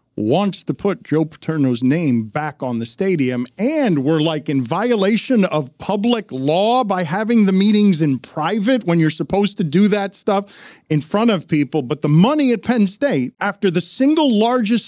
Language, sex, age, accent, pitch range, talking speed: English, male, 40-59, American, 165-240 Hz, 180 wpm